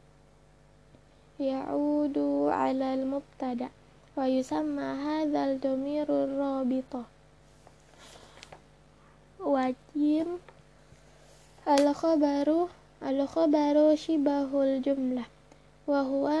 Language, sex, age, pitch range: Arabic, female, 20-39, 260-295 Hz